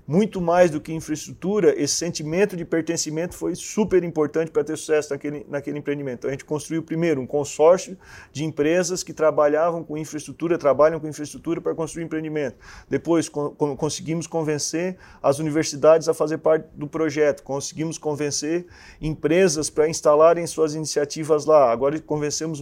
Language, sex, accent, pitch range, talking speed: Portuguese, male, Brazilian, 145-165 Hz, 155 wpm